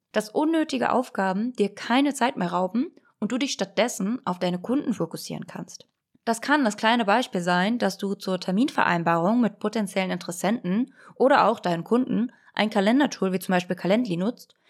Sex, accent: female, German